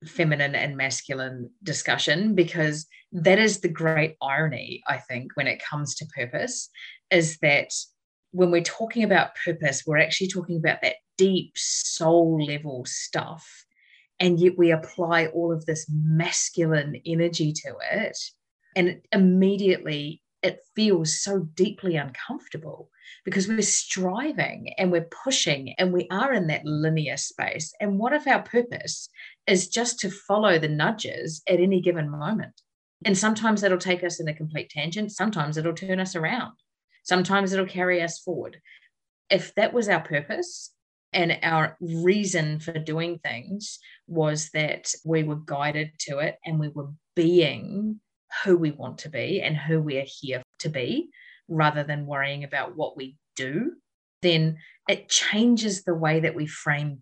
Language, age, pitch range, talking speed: English, 30-49, 150-190 Hz, 155 wpm